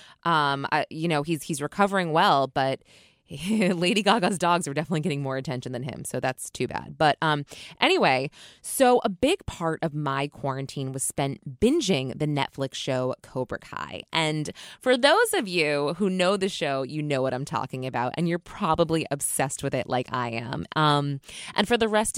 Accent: American